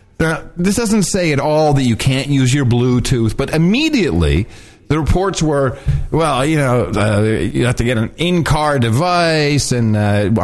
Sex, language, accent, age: male, English, American, 40-59